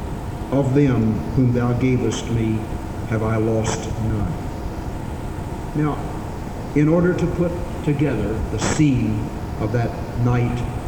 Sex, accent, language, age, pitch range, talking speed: male, American, English, 60-79, 110-130 Hz, 115 wpm